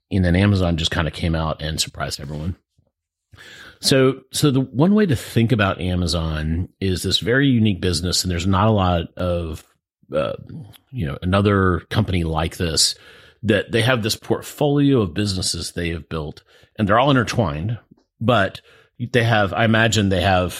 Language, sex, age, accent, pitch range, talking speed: English, male, 40-59, American, 85-110 Hz, 170 wpm